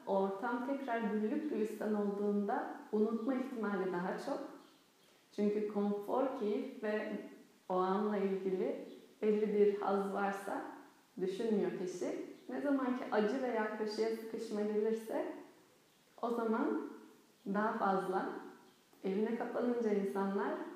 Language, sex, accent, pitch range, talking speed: Turkish, female, native, 195-240 Hz, 105 wpm